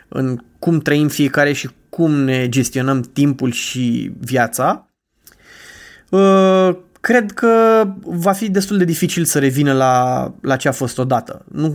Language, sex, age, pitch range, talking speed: Romanian, male, 20-39, 135-175 Hz, 140 wpm